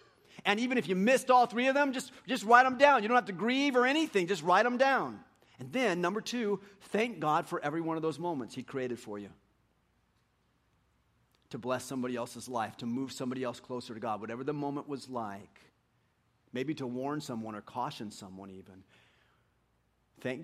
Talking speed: 195 wpm